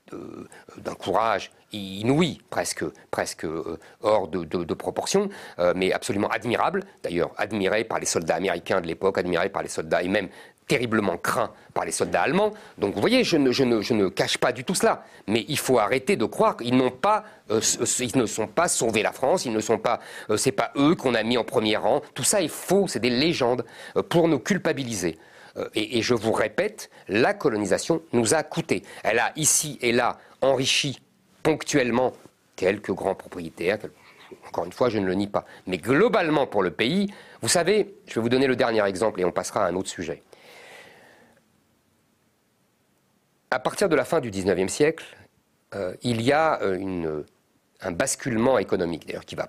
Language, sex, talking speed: French, male, 180 wpm